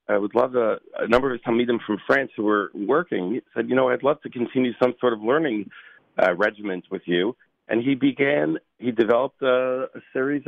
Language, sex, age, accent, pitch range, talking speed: English, male, 40-59, American, 95-125 Hz, 220 wpm